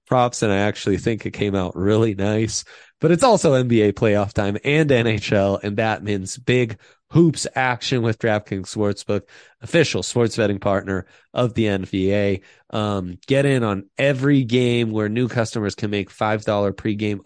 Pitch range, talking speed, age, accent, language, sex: 95-115 Hz, 160 wpm, 30-49, American, English, male